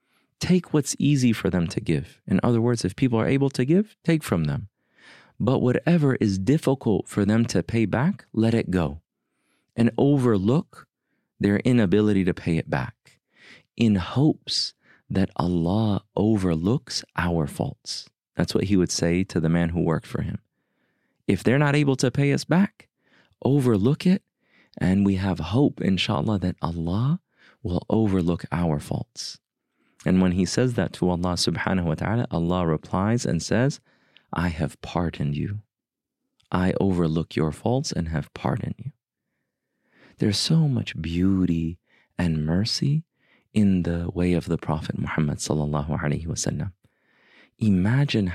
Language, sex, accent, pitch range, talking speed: English, male, American, 90-125 Hz, 155 wpm